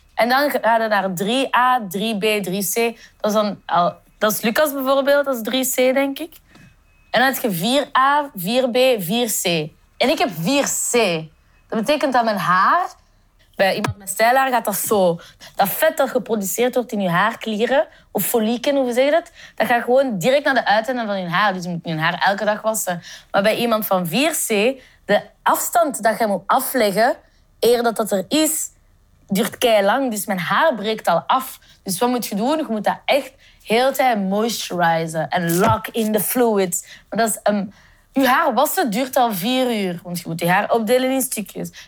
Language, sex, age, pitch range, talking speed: Dutch, female, 20-39, 195-255 Hz, 190 wpm